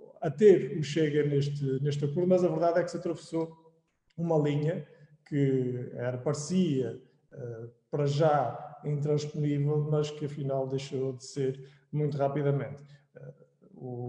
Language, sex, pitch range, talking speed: Portuguese, male, 140-160 Hz, 130 wpm